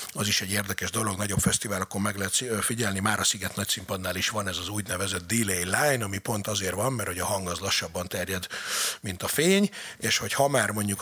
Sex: male